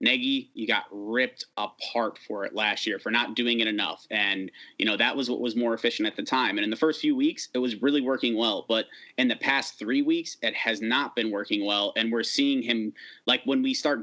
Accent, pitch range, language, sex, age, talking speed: American, 115-145 Hz, English, male, 30-49, 245 wpm